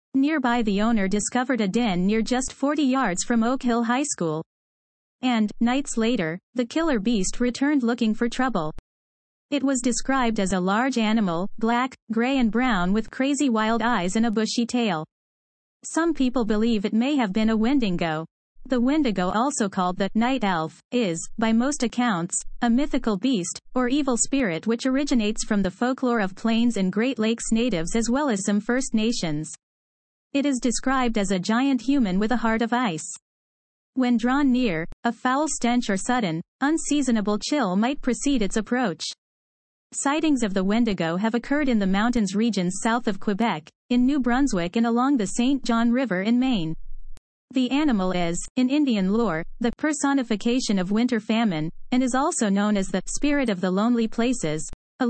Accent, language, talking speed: American, English, 175 wpm